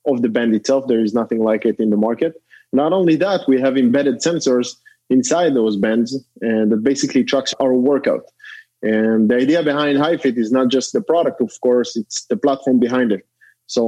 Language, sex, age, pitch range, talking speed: English, male, 20-39, 120-140 Hz, 200 wpm